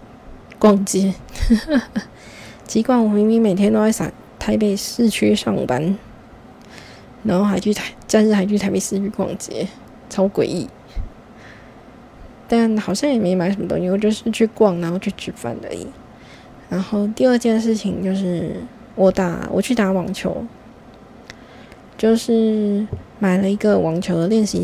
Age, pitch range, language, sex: 20-39, 185-220 Hz, Chinese, female